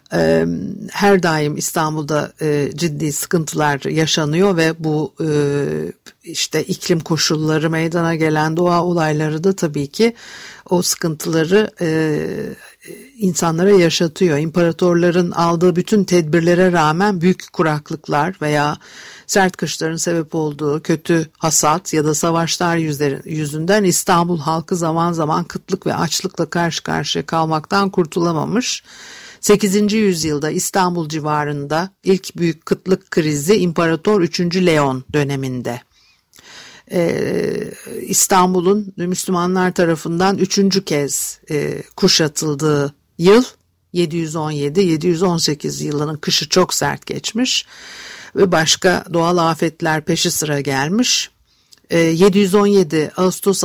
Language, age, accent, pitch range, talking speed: Turkish, 60-79, native, 155-185 Hz, 95 wpm